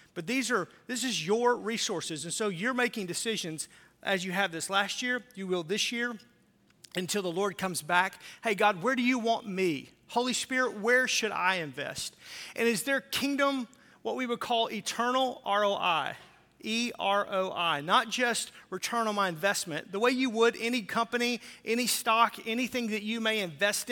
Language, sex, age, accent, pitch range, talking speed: English, male, 40-59, American, 185-235 Hz, 175 wpm